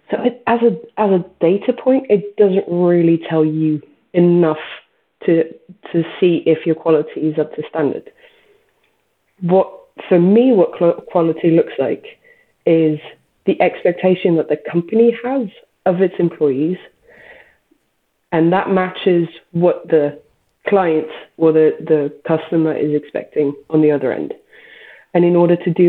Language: English